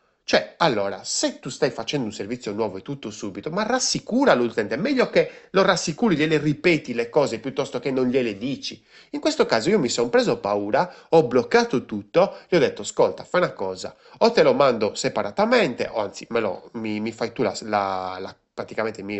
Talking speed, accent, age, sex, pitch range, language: 200 wpm, native, 30-49, male, 100-140 Hz, Italian